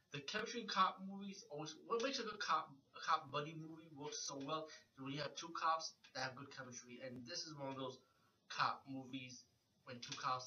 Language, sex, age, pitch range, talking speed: English, male, 20-39, 130-160 Hz, 225 wpm